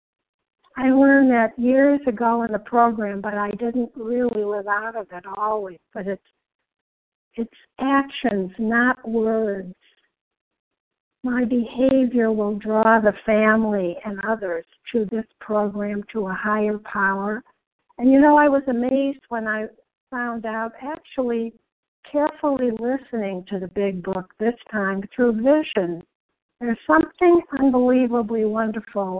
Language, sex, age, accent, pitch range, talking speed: English, female, 50-69, American, 210-260 Hz, 130 wpm